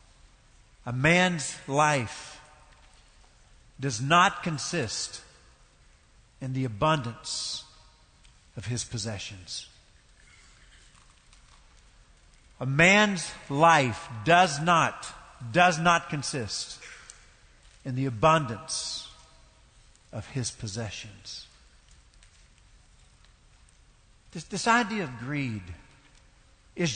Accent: American